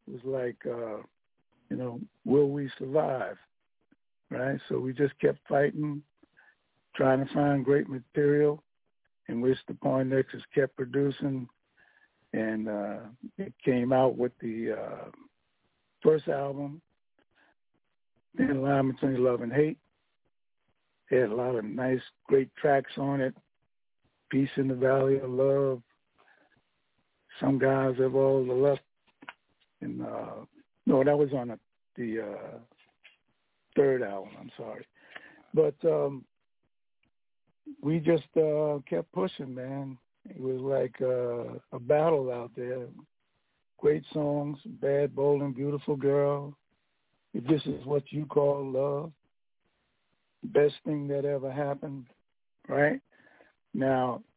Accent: American